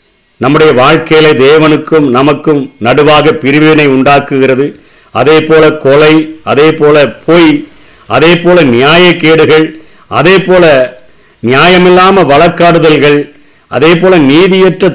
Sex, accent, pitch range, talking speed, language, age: male, native, 135-170 Hz, 90 wpm, Tamil, 50-69